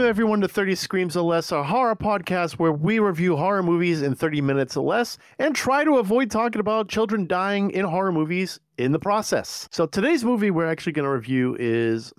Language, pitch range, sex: English, 125-180 Hz, male